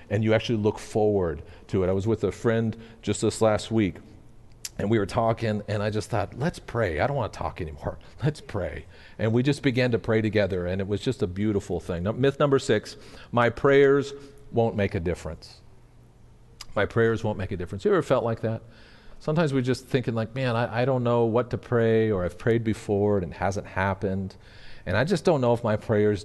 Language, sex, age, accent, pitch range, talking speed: English, male, 40-59, American, 100-120 Hz, 220 wpm